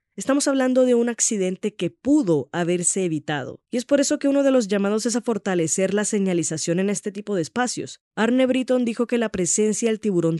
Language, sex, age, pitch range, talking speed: Spanish, female, 20-39, 170-205 Hz, 210 wpm